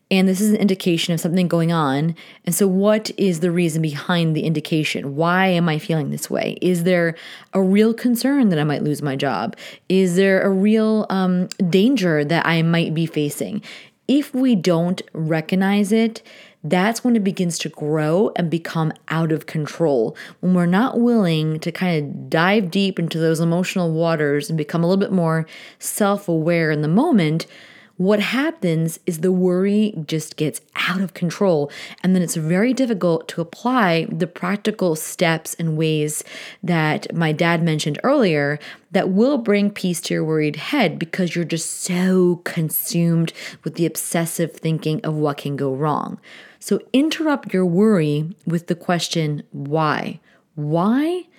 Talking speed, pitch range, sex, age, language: 165 wpm, 160-205 Hz, female, 30-49, English